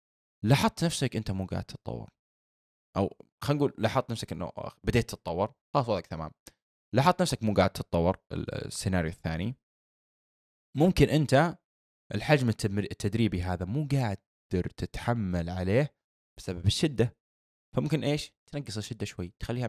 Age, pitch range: 20-39, 90-115 Hz